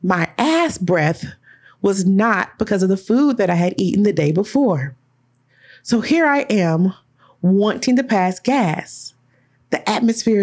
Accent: American